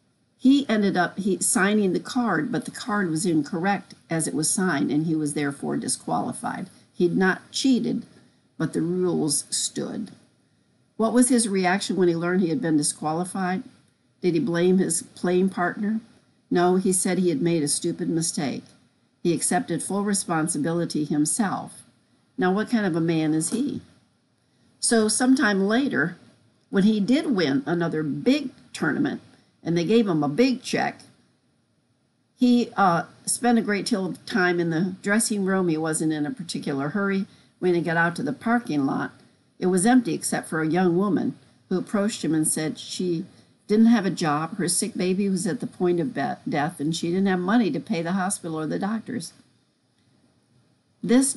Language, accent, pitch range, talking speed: English, American, 160-215 Hz, 175 wpm